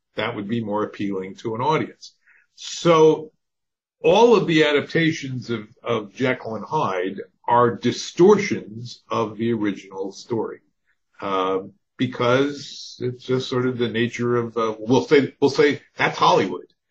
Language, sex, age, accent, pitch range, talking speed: English, male, 50-69, American, 105-150 Hz, 140 wpm